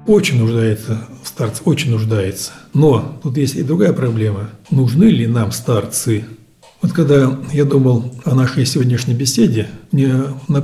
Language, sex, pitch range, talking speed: Russian, male, 125-155 Hz, 140 wpm